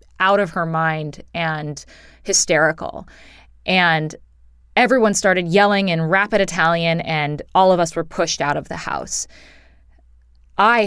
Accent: American